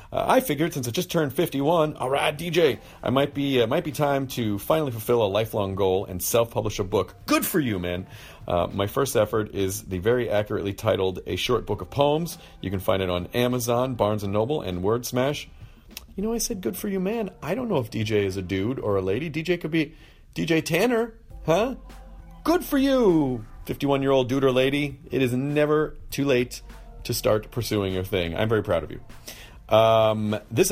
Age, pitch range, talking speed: 40-59, 95-135 Hz, 210 wpm